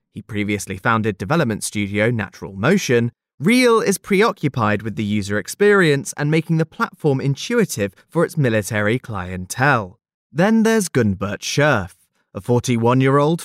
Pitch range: 105-170 Hz